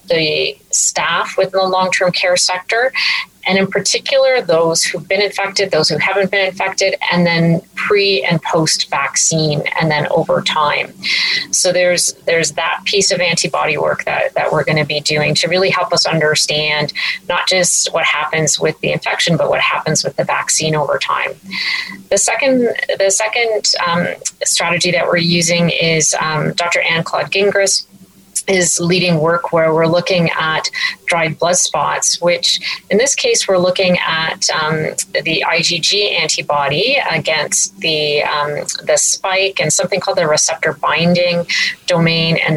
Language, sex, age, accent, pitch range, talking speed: English, female, 30-49, American, 160-200 Hz, 160 wpm